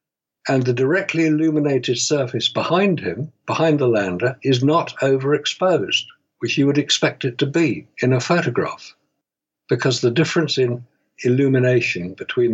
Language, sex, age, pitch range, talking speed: English, male, 60-79, 120-155 Hz, 140 wpm